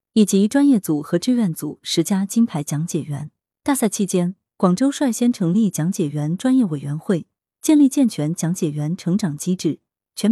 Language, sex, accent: Chinese, female, native